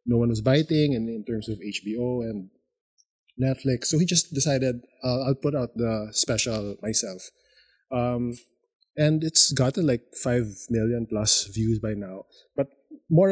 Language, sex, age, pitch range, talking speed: English, male, 20-39, 110-140 Hz, 160 wpm